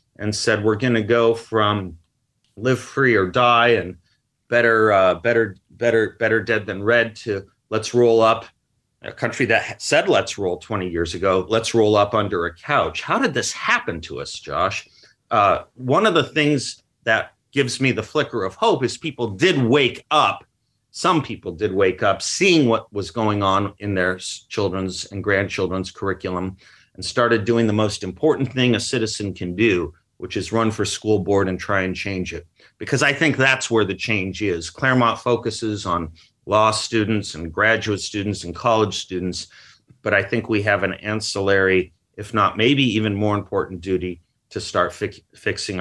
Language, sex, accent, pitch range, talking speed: English, male, American, 95-115 Hz, 180 wpm